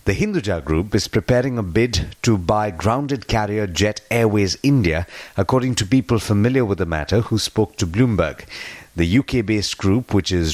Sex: male